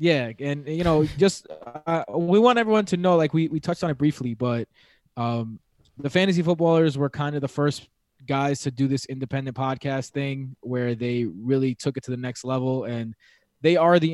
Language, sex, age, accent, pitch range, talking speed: English, male, 20-39, American, 125-150 Hz, 205 wpm